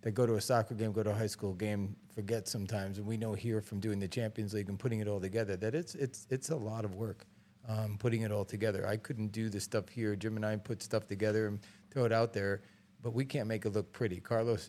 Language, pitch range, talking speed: English, 100-110 Hz, 270 wpm